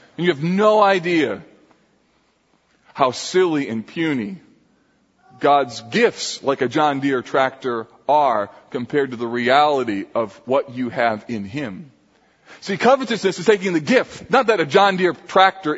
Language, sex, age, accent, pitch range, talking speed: English, male, 40-59, American, 150-200 Hz, 150 wpm